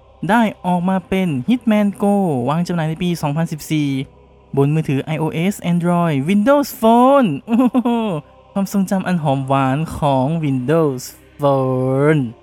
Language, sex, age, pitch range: Thai, male, 20-39, 145-200 Hz